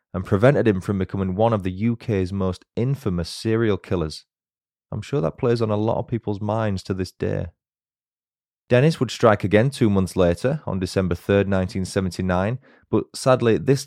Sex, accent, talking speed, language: male, British, 175 wpm, English